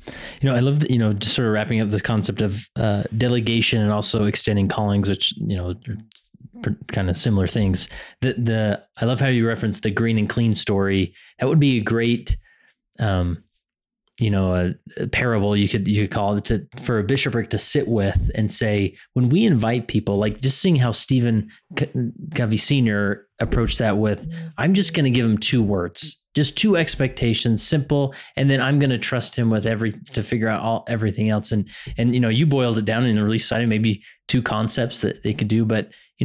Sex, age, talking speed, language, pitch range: male, 20-39, 215 wpm, English, 105-130 Hz